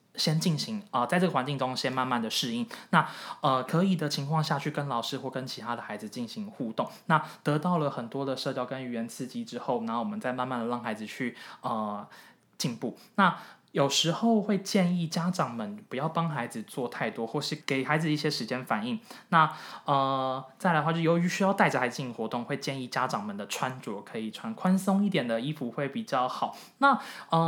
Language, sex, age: Chinese, male, 20-39